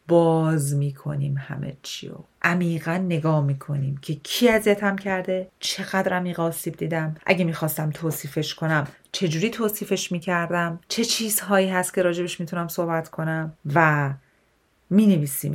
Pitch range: 145-195 Hz